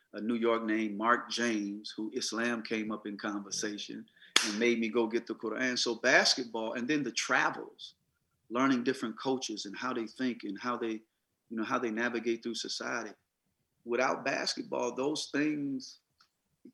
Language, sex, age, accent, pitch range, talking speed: English, male, 40-59, American, 120-150 Hz, 170 wpm